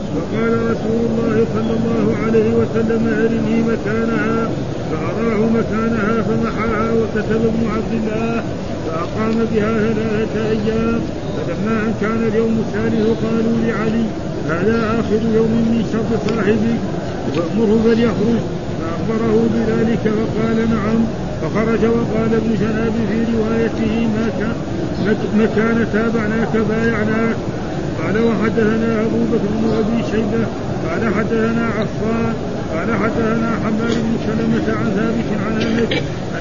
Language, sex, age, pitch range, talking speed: Arabic, male, 50-69, 215-225 Hz, 110 wpm